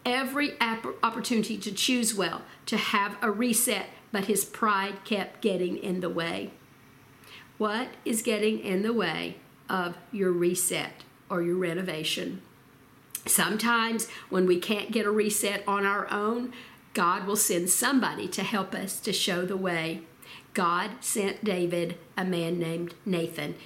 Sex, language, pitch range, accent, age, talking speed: female, English, 180-225 Hz, American, 50-69, 145 wpm